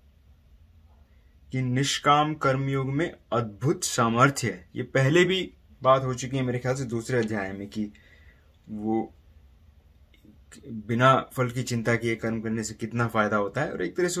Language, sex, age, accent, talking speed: English, male, 30-49, Indian, 160 wpm